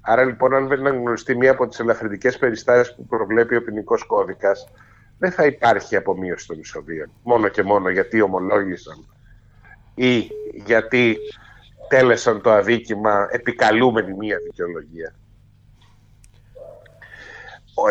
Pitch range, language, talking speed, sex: 105-140 Hz, Greek, 115 wpm, male